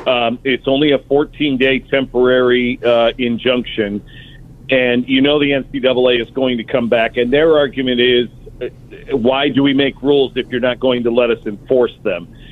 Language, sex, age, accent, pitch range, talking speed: English, male, 50-69, American, 125-150 Hz, 175 wpm